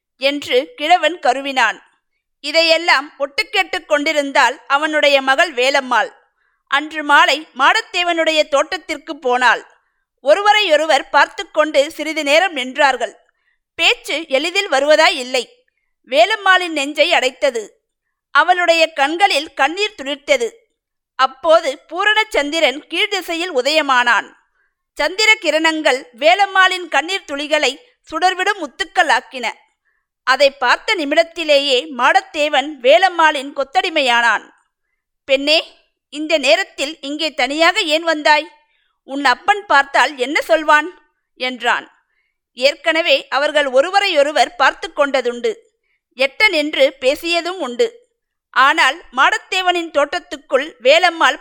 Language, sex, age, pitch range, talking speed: Tamil, female, 50-69, 280-365 Hz, 85 wpm